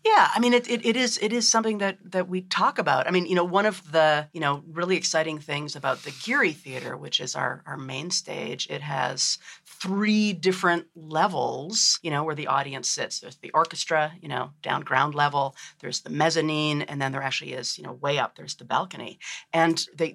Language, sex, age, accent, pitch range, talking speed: English, female, 40-59, American, 150-185 Hz, 215 wpm